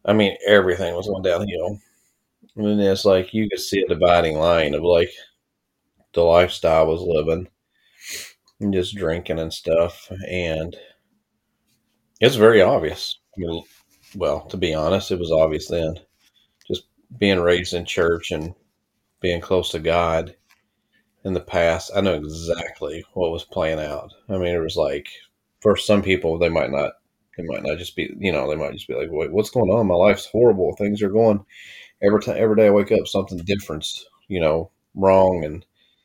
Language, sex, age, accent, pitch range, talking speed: English, male, 30-49, American, 85-100 Hz, 175 wpm